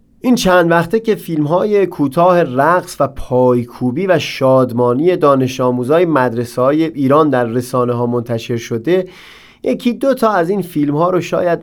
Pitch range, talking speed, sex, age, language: 130-170 Hz, 145 wpm, male, 30-49, Persian